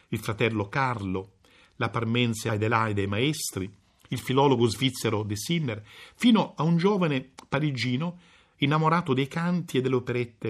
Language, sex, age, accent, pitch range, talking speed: Italian, male, 50-69, native, 105-165 Hz, 135 wpm